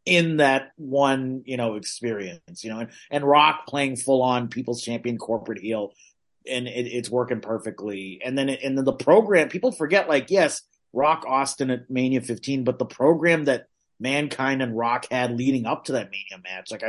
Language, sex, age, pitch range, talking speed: English, male, 30-49, 115-135 Hz, 190 wpm